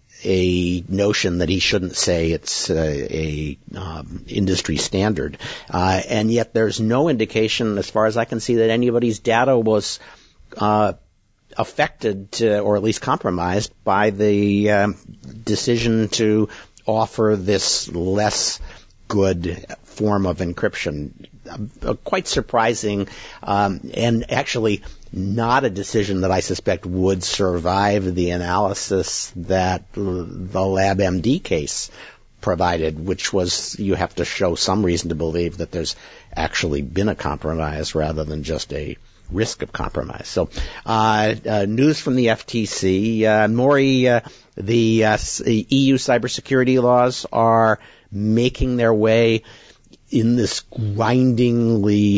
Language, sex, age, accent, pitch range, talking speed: English, male, 50-69, American, 95-115 Hz, 130 wpm